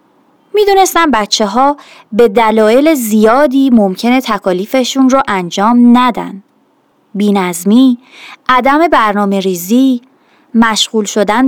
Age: 30-49